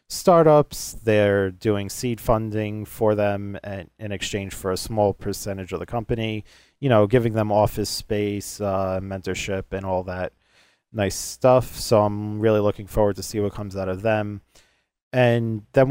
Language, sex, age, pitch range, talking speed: English, male, 30-49, 100-120 Hz, 165 wpm